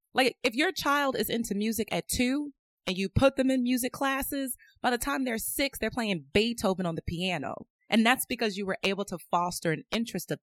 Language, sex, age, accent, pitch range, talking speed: English, female, 20-39, American, 175-245 Hz, 220 wpm